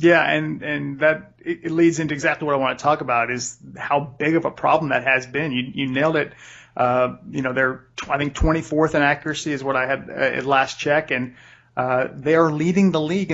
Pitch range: 135-160 Hz